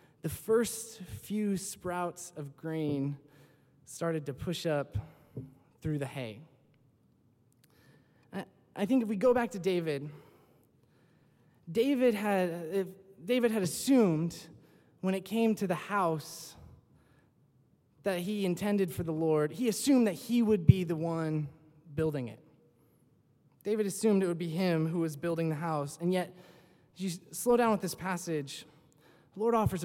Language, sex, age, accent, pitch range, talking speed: English, male, 20-39, American, 145-195 Hz, 140 wpm